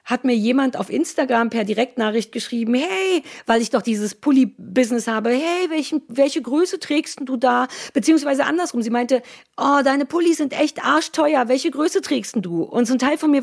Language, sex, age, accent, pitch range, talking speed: German, female, 50-69, German, 220-280 Hz, 190 wpm